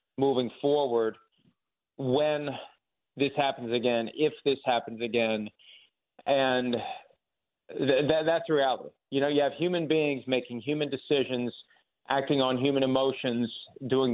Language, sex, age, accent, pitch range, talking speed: English, male, 40-59, American, 125-140 Hz, 125 wpm